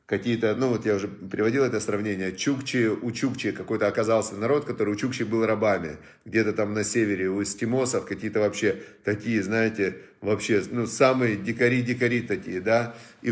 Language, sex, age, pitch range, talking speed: Russian, male, 40-59, 110-130 Hz, 160 wpm